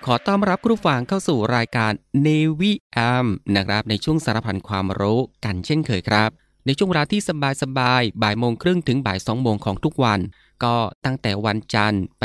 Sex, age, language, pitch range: male, 20-39, Thai, 105-135 Hz